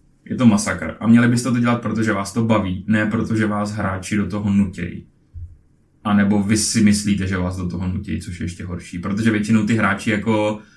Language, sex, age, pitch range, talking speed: Czech, male, 20-39, 100-125 Hz, 210 wpm